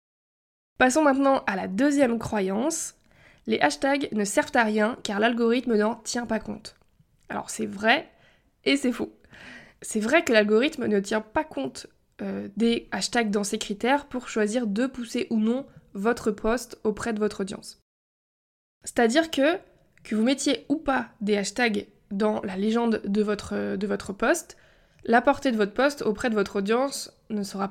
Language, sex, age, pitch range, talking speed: French, female, 20-39, 210-265 Hz, 170 wpm